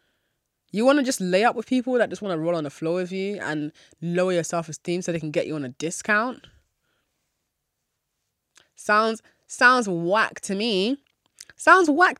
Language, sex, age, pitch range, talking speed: English, female, 20-39, 160-220 Hz, 180 wpm